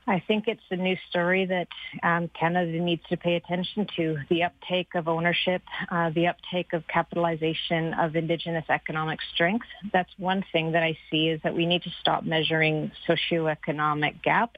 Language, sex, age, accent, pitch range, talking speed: English, female, 30-49, American, 155-175 Hz, 175 wpm